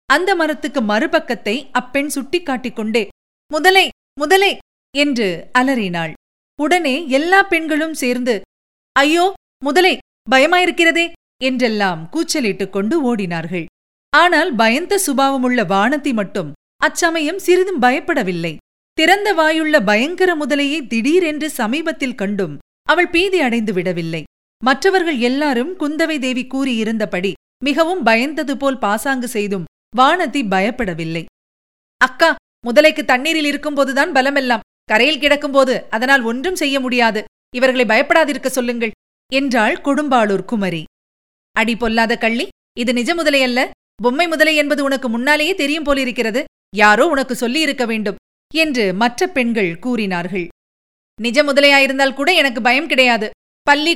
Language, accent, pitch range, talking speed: Tamil, native, 225-305 Hz, 110 wpm